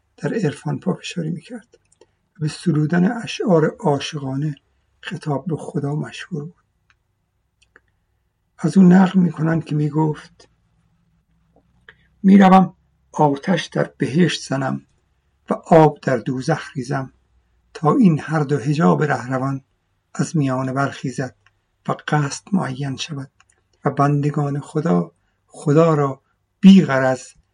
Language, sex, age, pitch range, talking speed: Persian, male, 60-79, 105-165 Hz, 105 wpm